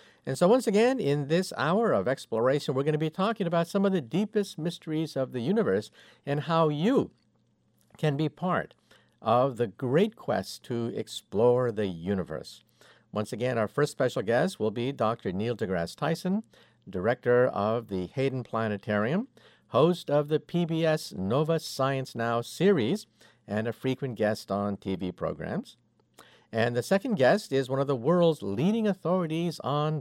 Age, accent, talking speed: 50-69, American, 160 wpm